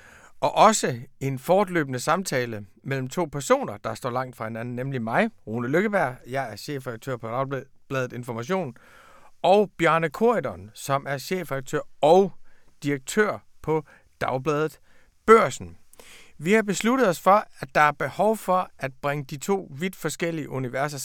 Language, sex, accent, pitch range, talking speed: Danish, male, native, 135-185 Hz, 145 wpm